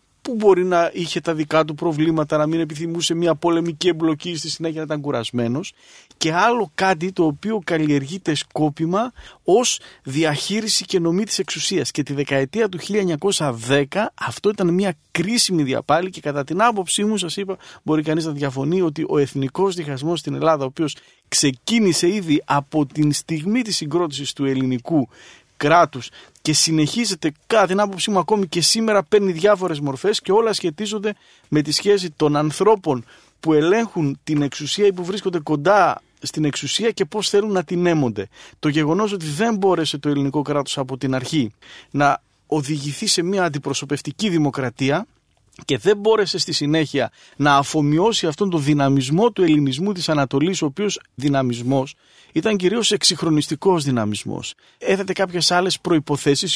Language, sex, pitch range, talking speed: Greek, male, 145-190 Hz, 155 wpm